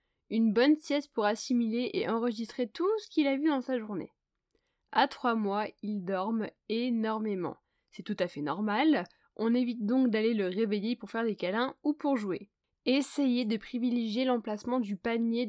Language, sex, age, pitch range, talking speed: French, female, 10-29, 210-260 Hz, 175 wpm